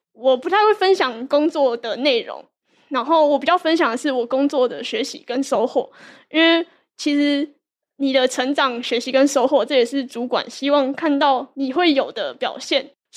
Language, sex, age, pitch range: Chinese, female, 10-29, 250-290 Hz